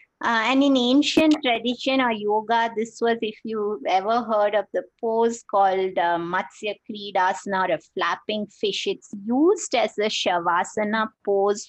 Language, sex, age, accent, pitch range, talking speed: English, female, 20-39, Indian, 185-230 Hz, 150 wpm